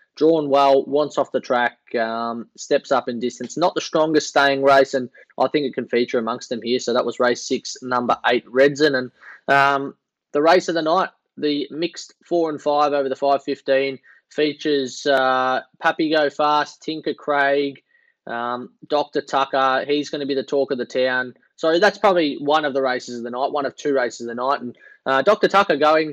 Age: 20-39